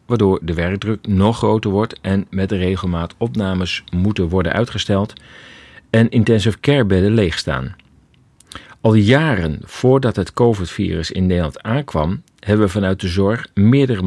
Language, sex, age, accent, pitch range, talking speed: Dutch, male, 40-59, Dutch, 90-115 Hz, 135 wpm